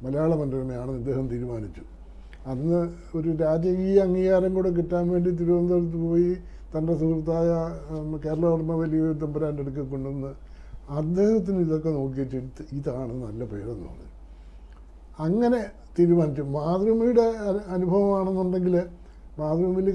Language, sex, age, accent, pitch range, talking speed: Malayalam, male, 60-79, native, 135-180 Hz, 95 wpm